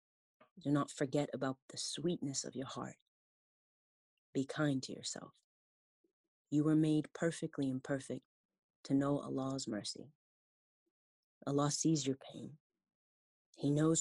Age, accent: 30-49, American